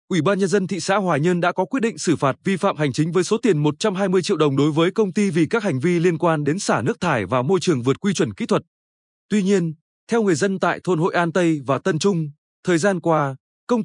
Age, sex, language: 20-39, male, Vietnamese